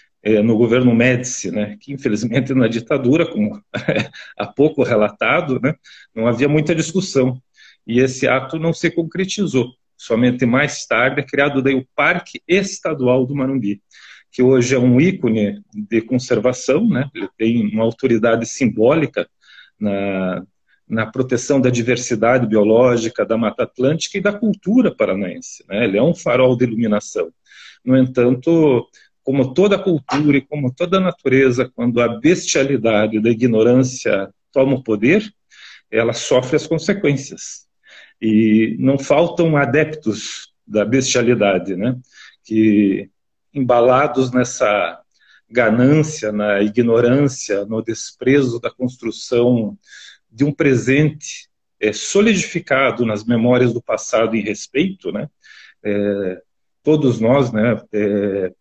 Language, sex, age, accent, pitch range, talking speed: Portuguese, male, 40-59, Brazilian, 115-145 Hz, 125 wpm